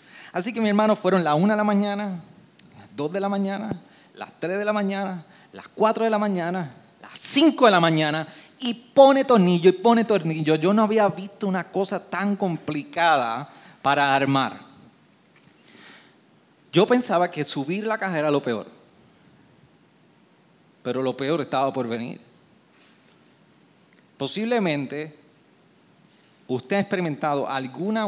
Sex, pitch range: male, 150-240 Hz